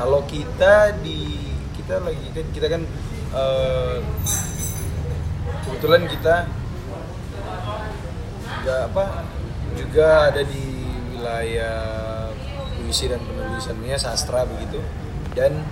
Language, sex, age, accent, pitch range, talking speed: Indonesian, male, 20-39, native, 80-125 Hz, 85 wpm